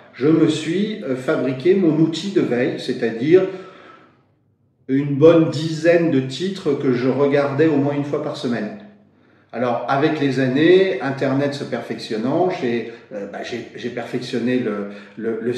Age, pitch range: 40-59, 125-165 Hz